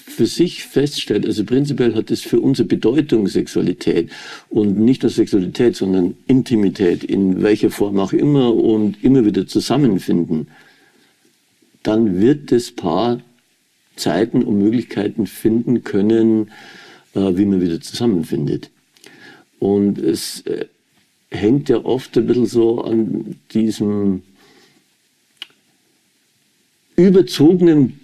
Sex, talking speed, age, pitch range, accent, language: male, 105 wpm, 50-69, 105-125 Hz, German, German